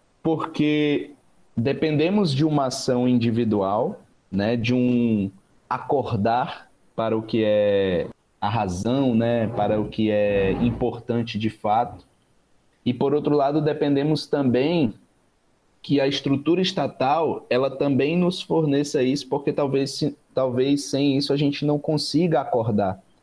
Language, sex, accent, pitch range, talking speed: Portuguese, male, Brazilian, 110-145 Hz, 125 wpm